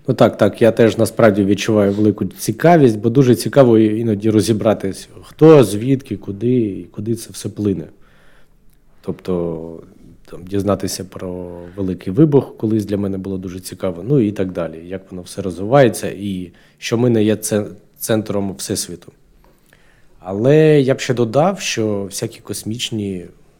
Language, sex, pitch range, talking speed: Ukrainian, male, 95-115 Hz, 145 wpm